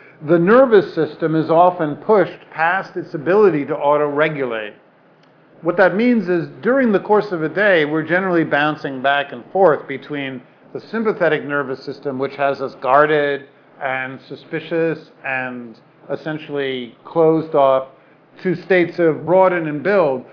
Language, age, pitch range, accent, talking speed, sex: English, 50-69, 140-170 Hz, American, 140 wpm, male